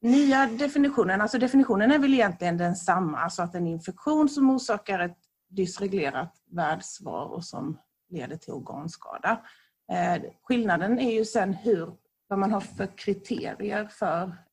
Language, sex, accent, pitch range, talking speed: Swedish, female, native, 175-225 Hz, 140 wpm